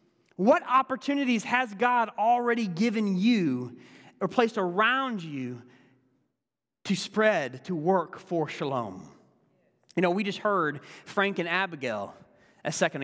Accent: American